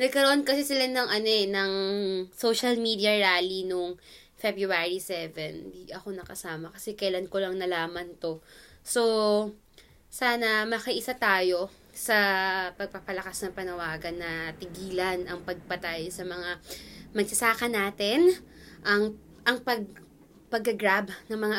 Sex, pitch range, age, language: female, 180-230 Hz, 20-39, Filipino